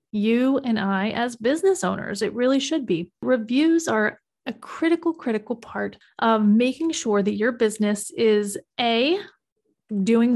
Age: 30-49